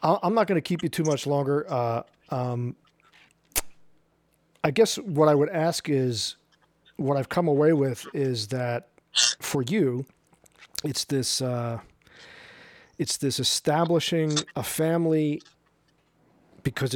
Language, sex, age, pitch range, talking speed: English, male, 40-59, 125-150 Hz, 125 wpm